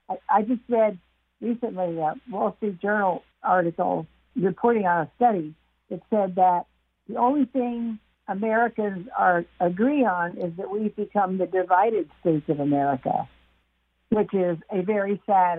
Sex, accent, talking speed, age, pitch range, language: female, American, 140 wpm, 60-79, 180-245 Hz, English